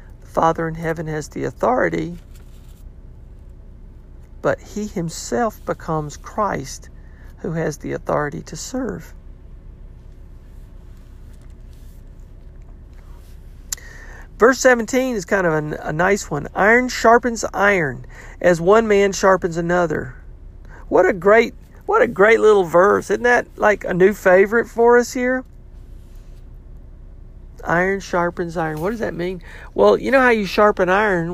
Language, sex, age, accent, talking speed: English, male, 50-69, American, 120 wpm